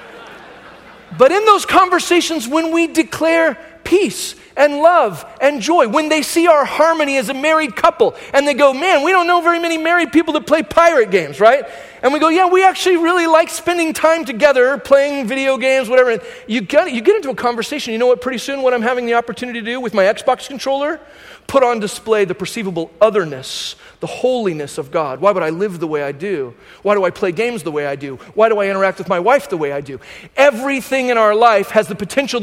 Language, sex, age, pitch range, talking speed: English, male, 40-59, 225-305 Hz, 220 wpm